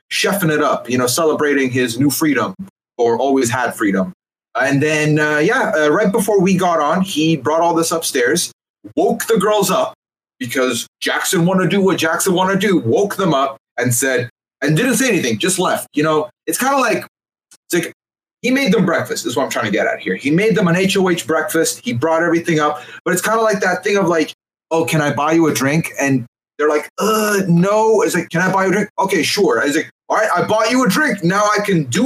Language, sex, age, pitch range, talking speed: English, male, 30-49, 150-205 Hz, 240 wpm